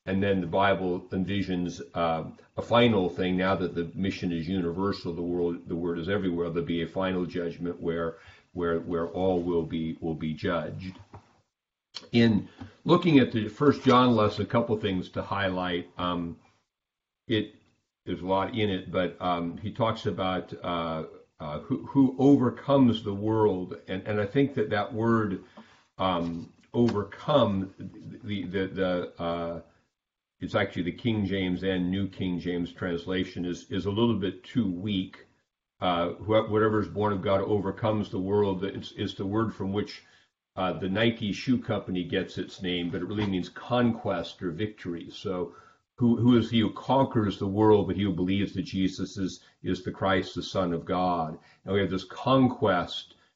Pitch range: 90-105 Hz